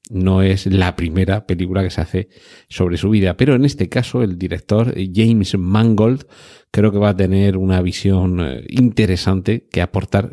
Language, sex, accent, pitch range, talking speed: Spanish, male, Spanish, 95-115 Hz, 170 wpm